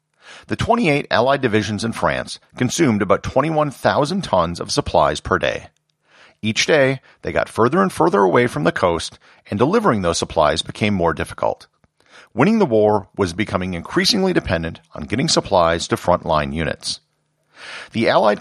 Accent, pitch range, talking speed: American, 100-140 Hz, 155 wpm